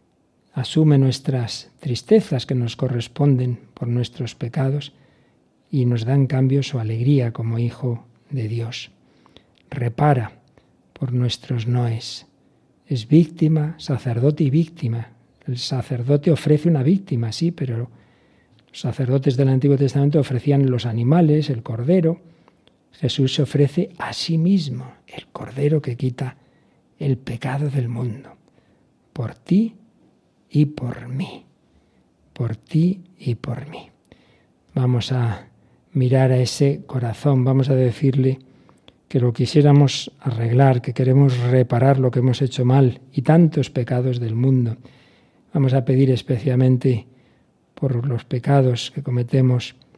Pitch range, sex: 125-145 Hz, male